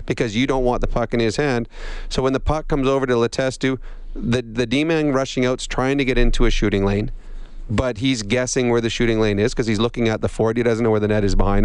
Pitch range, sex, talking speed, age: 120-140 Hz, male, 270 wpm, 40-59